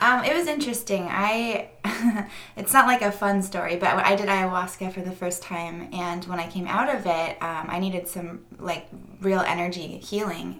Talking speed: 195 wpm